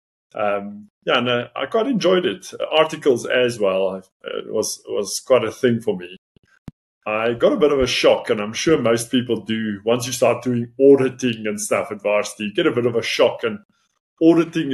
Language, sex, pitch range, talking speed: English, male, 110-135 Hz, 210 wpm